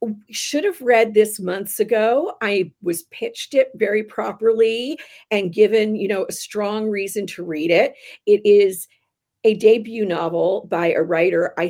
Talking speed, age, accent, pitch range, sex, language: 160 wpm, 50-69, American, 185-255 Hz, female, English